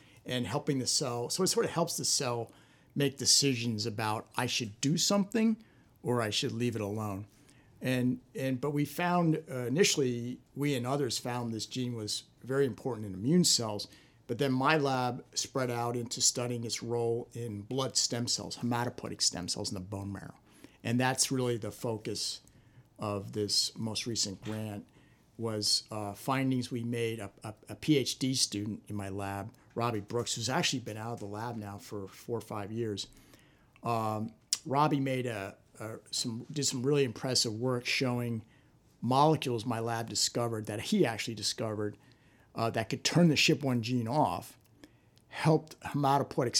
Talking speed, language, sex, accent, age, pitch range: 170 wpm, English, male, American, 50-69, 110-135 Hz